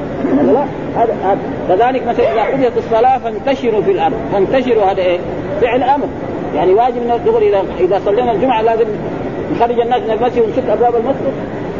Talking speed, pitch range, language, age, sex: 140 wpm, 210-265 Hz, Arabic, 40-59, male